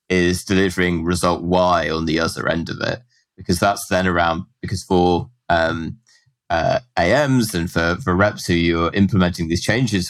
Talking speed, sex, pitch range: 165 wpm, male, 90-105 Hz